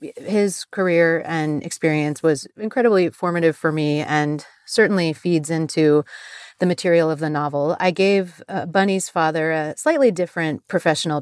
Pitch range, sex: 155-180 Hz, female